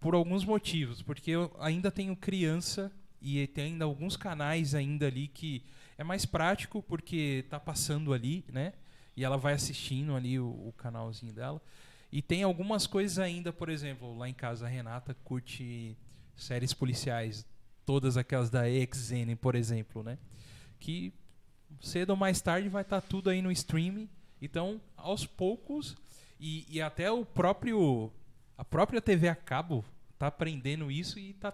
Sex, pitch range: male, 130-175 Hz